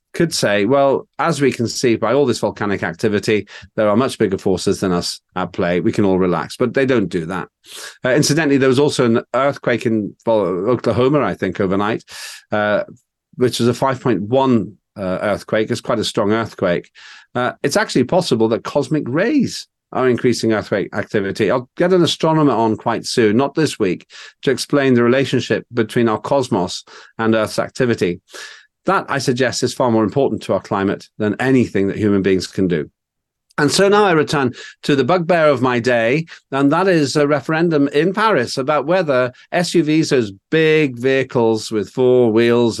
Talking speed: 180 wpm